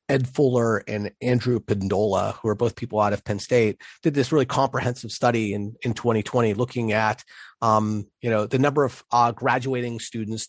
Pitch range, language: 110-130 Hz, English